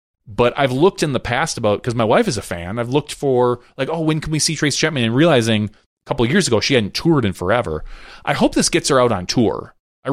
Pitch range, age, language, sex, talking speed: 100-135 Hz, 30-49, English, male, 265 wpm